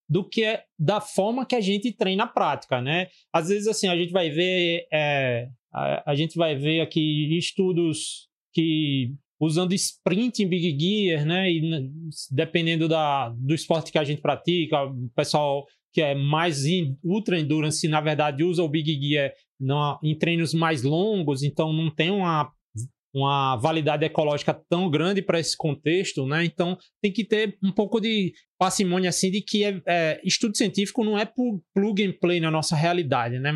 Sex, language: male, Portuguese